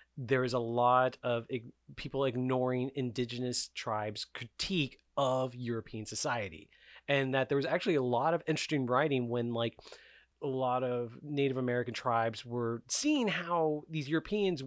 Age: 30-49